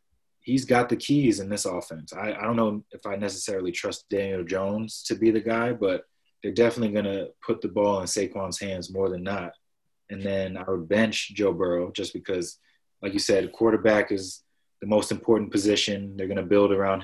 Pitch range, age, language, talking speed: 100-120 Hz, 20-39, English, 205 wpm